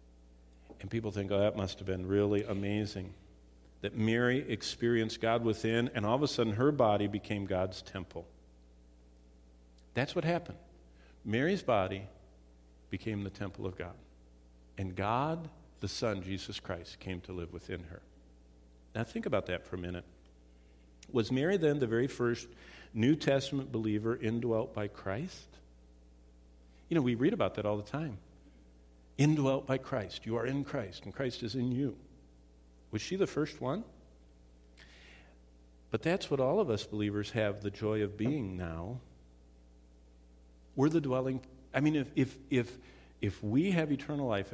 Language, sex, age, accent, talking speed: English, male, 50-69, American, 160 wpm